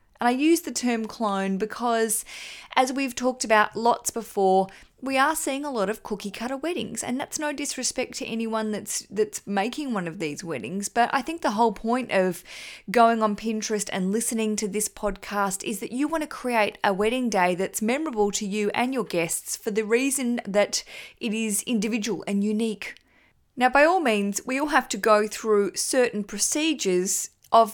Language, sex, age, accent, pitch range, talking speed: English, female, 20-39, Australian, 200-255 Hz, 190 wpm